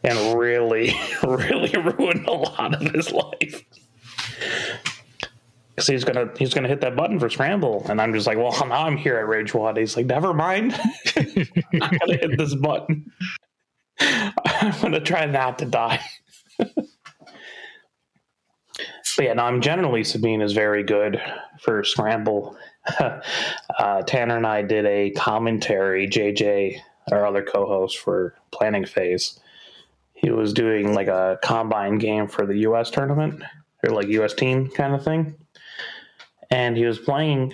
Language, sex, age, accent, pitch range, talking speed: English, male, 30-49, American, 105-150 Hz, 155 wpm